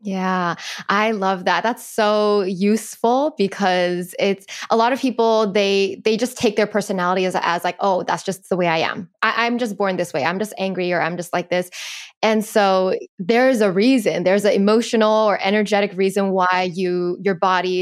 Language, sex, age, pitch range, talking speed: English, female, 10-29, 190-230 Hz, 190 wpm